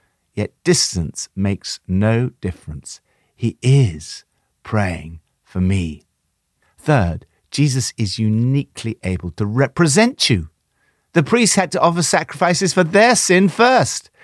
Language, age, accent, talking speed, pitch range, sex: English, 50-69, British, 120 wpm, 95-145 Hz, male